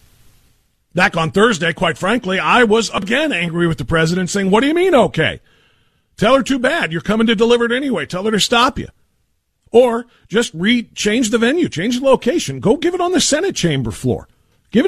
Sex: male